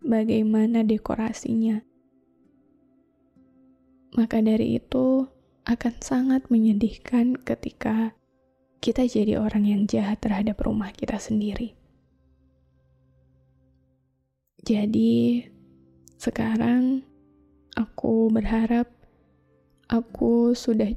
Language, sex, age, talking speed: Indonesian, female, 10-29, 70 wpm